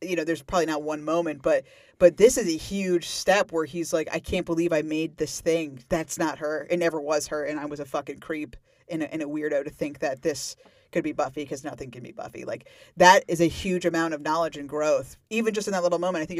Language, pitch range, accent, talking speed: English, 155-175 Hz, American, 265 wpm